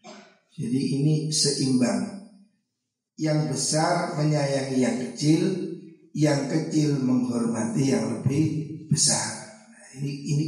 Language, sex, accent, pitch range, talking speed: Indonesian, male, native, 130-175 Hz, 90 wpm